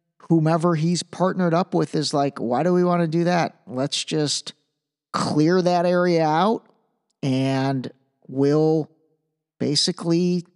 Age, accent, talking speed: 40-59, American, 130 wpm